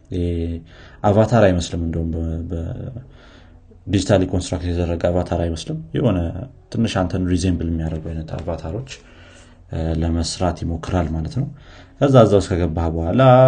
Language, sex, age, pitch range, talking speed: Amharic, male, 30-49, 85-100 Hz, 100 wpm